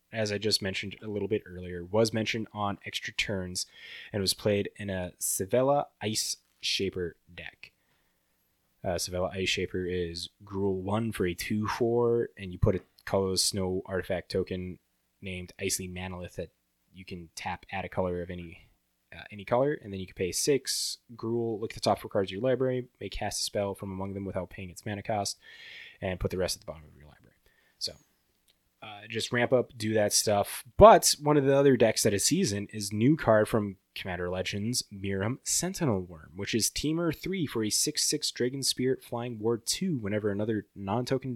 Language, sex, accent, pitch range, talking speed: English, male, American, 95-120 Hz, 190 wpm